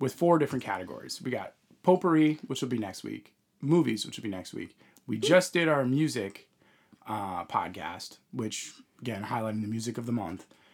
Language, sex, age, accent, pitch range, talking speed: English, male, 20-39, American, 120-160 Hz, 185 wpm